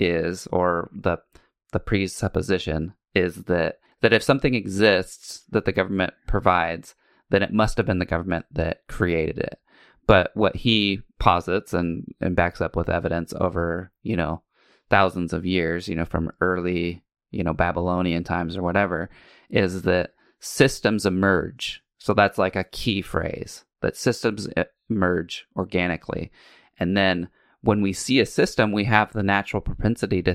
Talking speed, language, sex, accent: 155 wpm, English, male, American